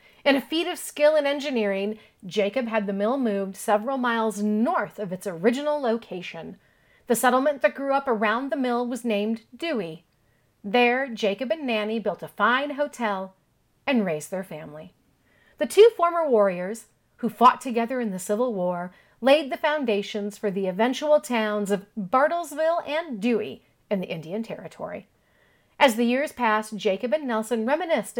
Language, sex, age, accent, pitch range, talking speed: English, female, 40-59, American, 205-275 Hz, 160 wpm